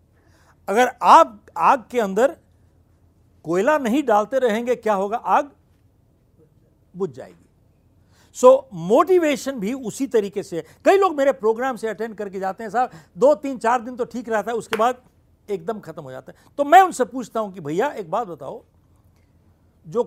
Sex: male